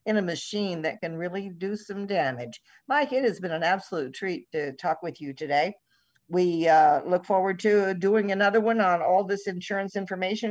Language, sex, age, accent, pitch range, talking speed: English, female, 50-69, American, 170-210 Hz, 195 wpm